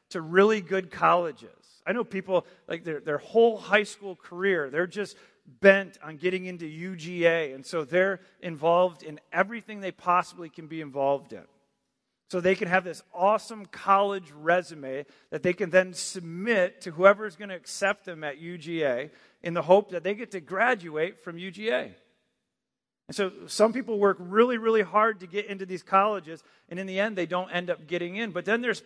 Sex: male